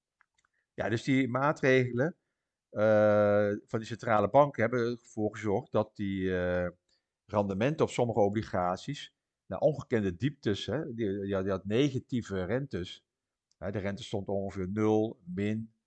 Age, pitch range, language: 50-69, 95-115 Hz, Dutch